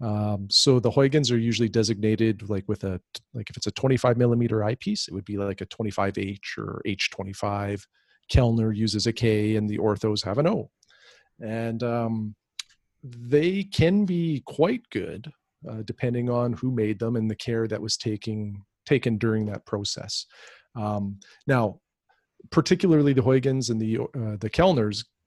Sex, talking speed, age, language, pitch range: male, 165 wpm, 40-59, English, 105-125 Hz